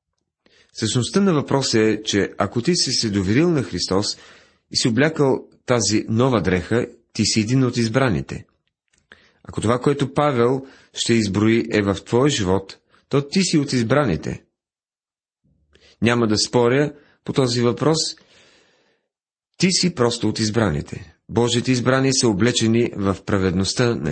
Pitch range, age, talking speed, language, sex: 105-140 Hz, 40-59, 140 wpm, Bulgarian, male